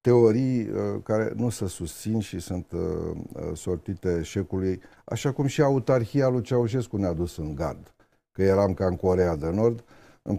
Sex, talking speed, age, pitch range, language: male, 155 wpm, 50-69, 90-120 Hz, Romanian